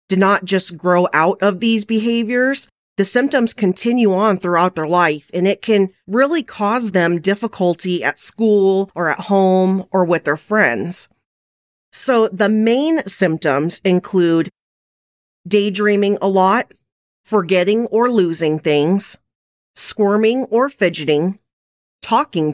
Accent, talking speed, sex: American, 125 wpm, female